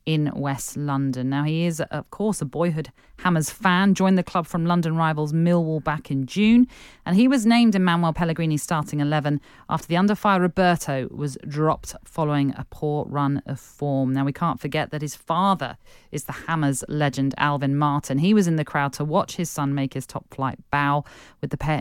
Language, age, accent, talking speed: English, 40-59, British, 200 wpm